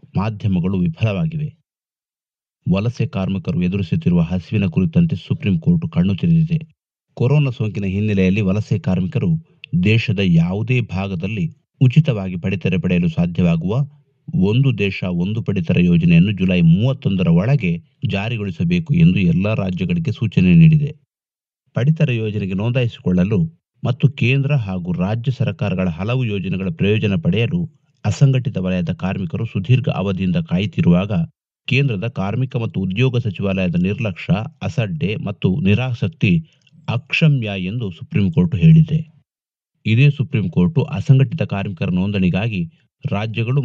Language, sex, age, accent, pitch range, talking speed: Kannada, male, 30-49, native, 100-155 Hz, 100 wpm